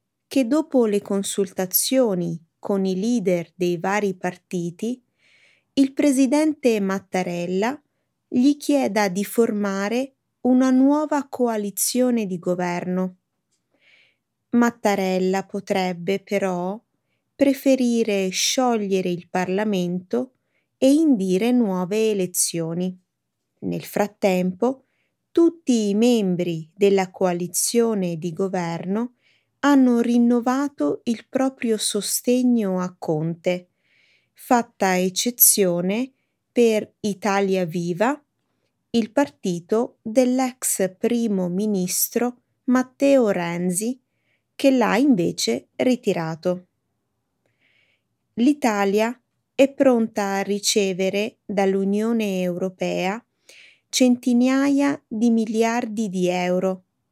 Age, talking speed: 20-39, 80 wpm